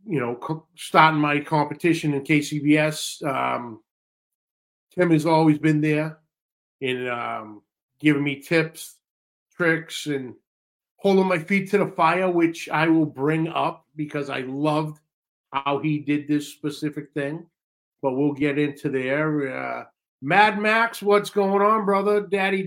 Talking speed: 140 wpm